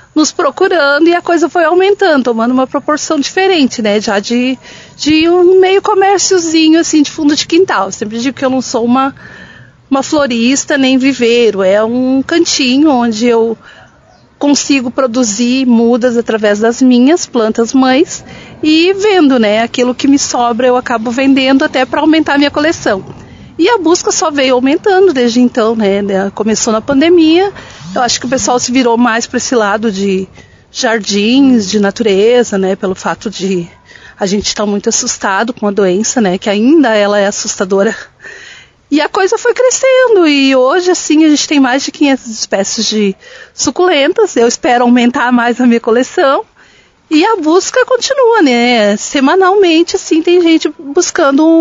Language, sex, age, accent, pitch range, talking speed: Portuguese, female, 40-59, Brazilian, 230-320 Hz, 165 wpm